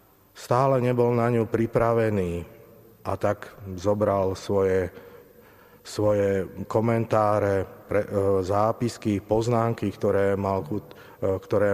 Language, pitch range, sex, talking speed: Slovak, 95-115 Hz, male, 90 wpm